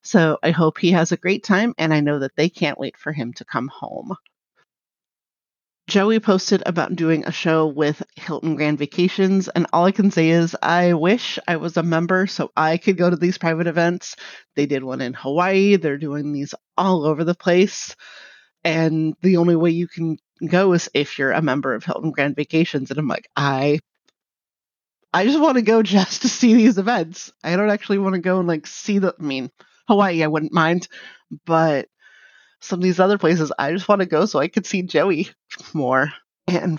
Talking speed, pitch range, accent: 205 wpm, 155-185 Hz, American